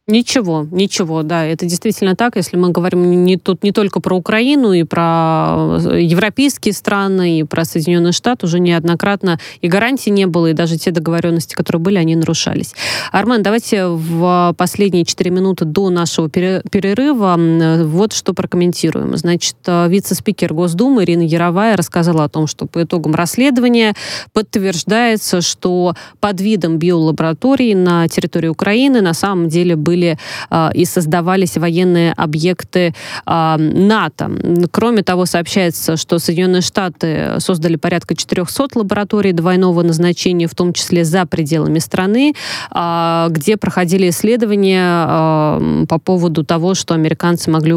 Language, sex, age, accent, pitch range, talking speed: Russian, female, 20-39, native, 165-195 Hz, 140 wpm